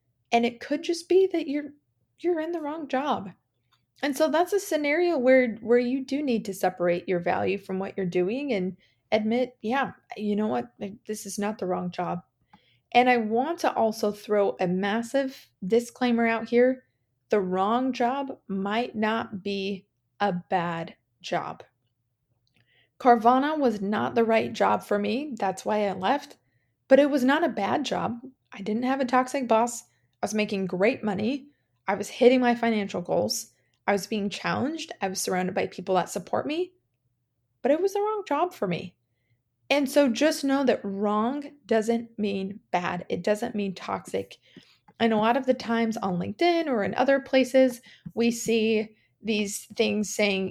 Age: 20-39